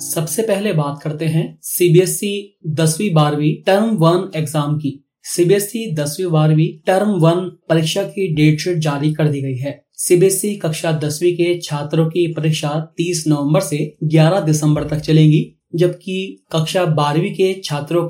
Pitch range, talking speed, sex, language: 150-180 Hz, 155 wpm, male, Hindi